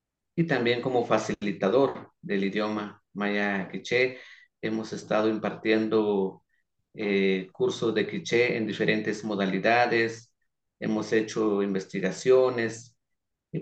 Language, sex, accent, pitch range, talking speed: English, male, Mexican, 105-130 Hz, 95 wpm